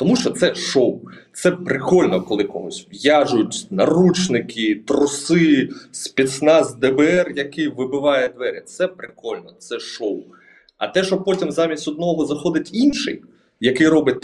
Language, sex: Ukrainian, male